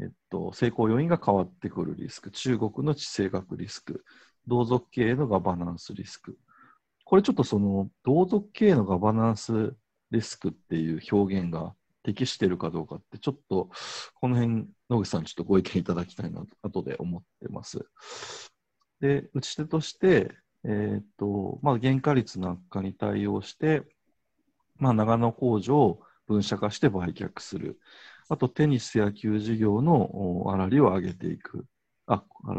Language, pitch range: Japanese, 100-140 Hz